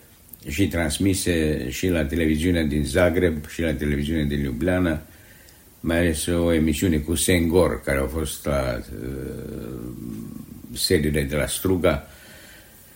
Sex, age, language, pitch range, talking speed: male, 60-79, Romanian, 75-95 Hz, 120 wpm